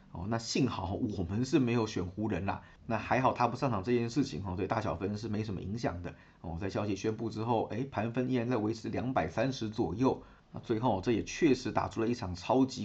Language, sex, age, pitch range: Chinese, male, 30-49, 95-120 Hz